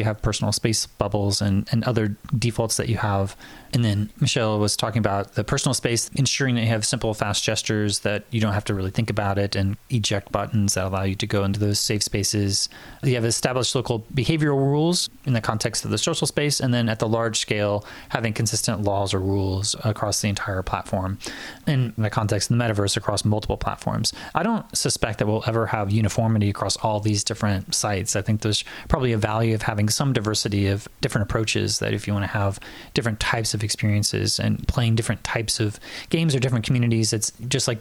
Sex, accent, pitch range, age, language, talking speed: male, American, 105-120 Hz, 20-39, English, 215 wpm